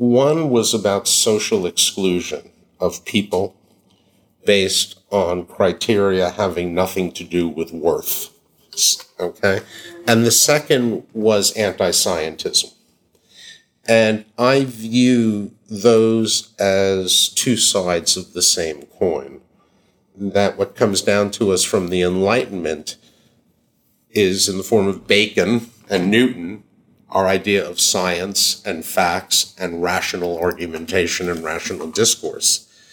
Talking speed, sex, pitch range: 115 wpm, male, 90-110 Hz